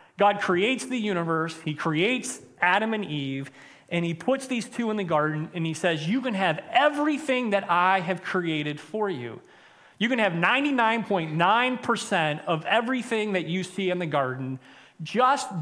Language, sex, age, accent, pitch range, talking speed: English, male, 30-49, American, 165-225 Hz, 165 wpm